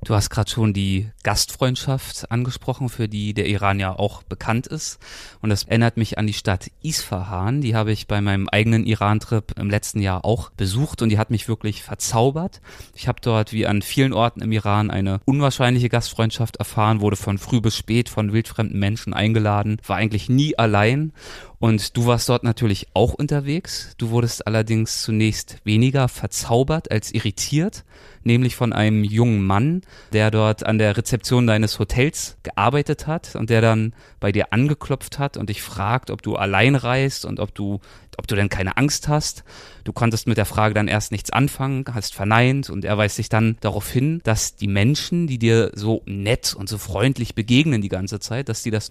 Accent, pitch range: German, 105-125 Hz